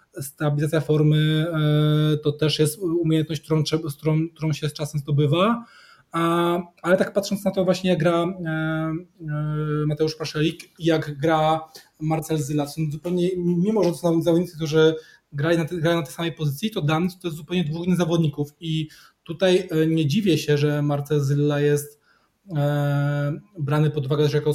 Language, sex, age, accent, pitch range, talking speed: Polish, male, 20-39, native, 150-170 Hz, 165 wpm